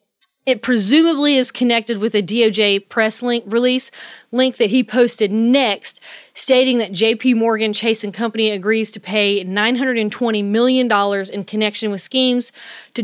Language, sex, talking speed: English, female, 150 wpm